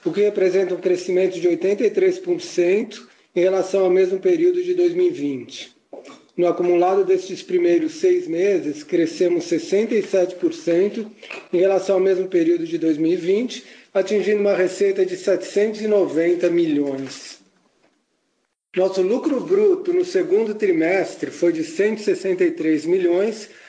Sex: male